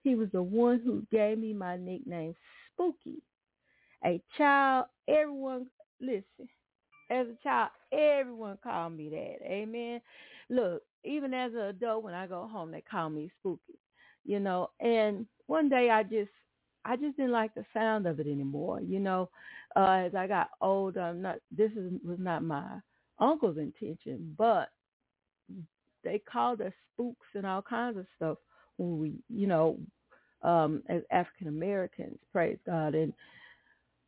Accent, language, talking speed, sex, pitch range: American, English, 155 wpm, female, 170-245 Hz